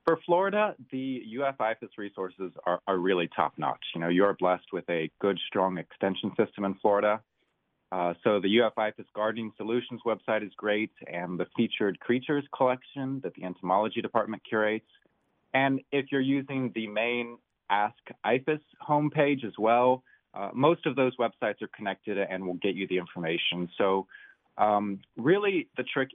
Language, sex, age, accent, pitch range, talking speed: English, male, 30-49, American, 95-130 Hz, 165 wpm